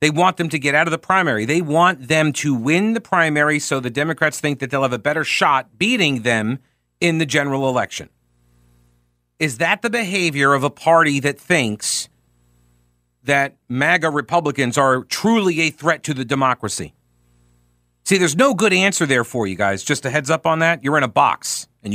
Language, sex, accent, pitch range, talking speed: English, male, American, 115-180 Hz, 195 wpm